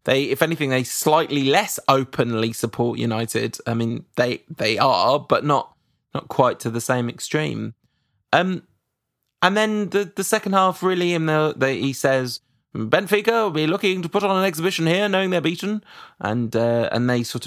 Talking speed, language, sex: 180 wpm, English, male